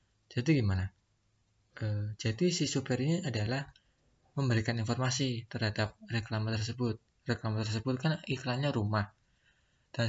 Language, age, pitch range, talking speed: Indonesian, 20-39, 105-130 Hz, 115 wpm